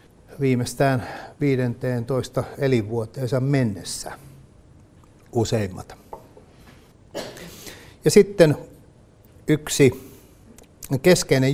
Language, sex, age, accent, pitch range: Finnish, male, 60-79, native, 115-140 Hz